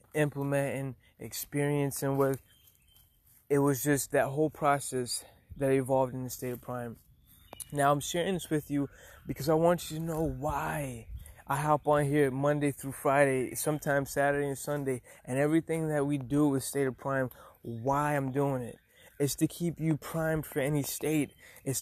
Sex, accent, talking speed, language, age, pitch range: male, American, 175 wpm, English, 20-39, 130-150 Hz